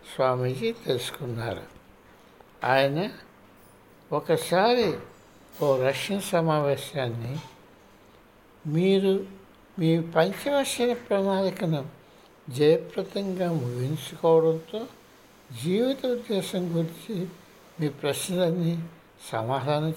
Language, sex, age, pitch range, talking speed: Telugu, male, 60-79, 140-190 Hz, 55 wpm